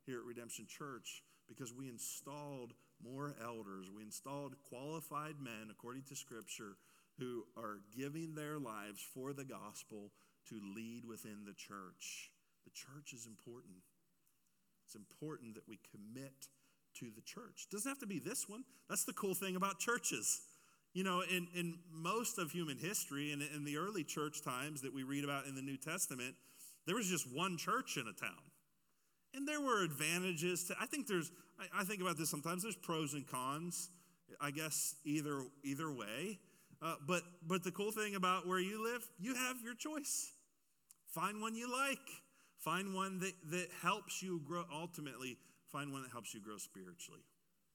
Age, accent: 40-59, American